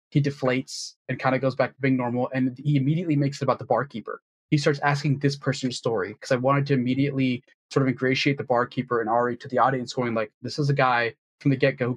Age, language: 20-39, English